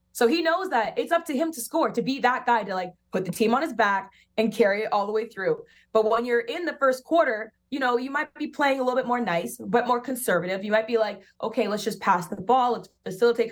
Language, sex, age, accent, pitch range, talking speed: English, female, 20-39, American, 190-235 Hz, 275 wpm